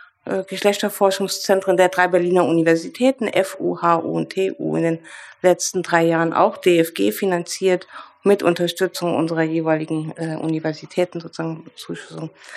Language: German